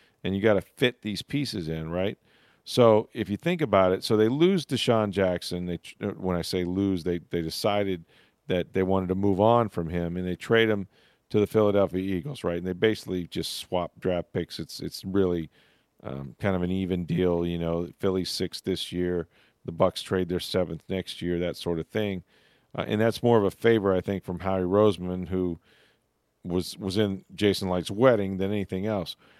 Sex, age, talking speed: male, 40-59, 205 wpm